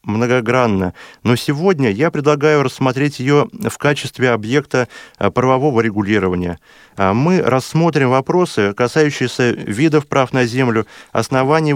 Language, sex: Russian, male